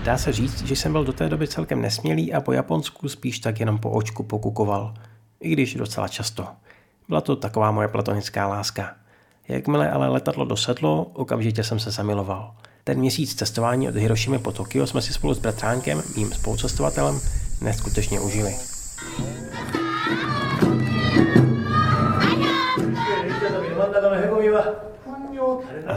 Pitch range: 100-125 Hz